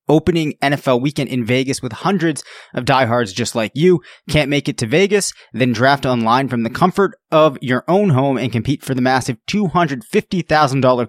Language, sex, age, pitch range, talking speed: English, male, 20-39, 125-155 Hz, 180 wpm